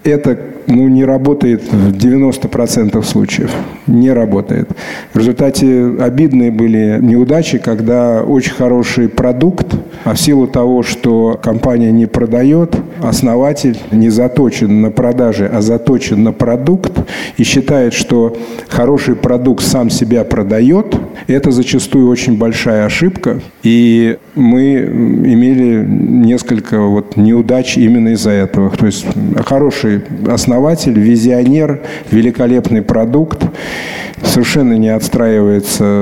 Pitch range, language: 110-135 Hz, Russian